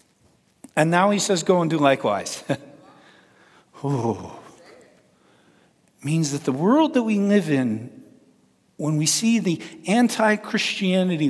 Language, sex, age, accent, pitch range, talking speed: English, male, 50-69, American, 140-210 Hz, 115 wpm